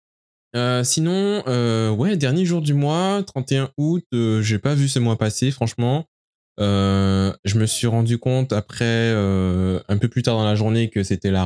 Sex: male